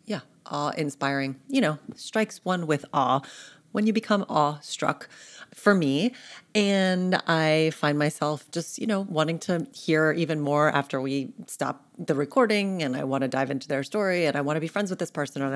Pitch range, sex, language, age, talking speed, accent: 140-165 Hz, female, English, 30-49, 185 wpm, American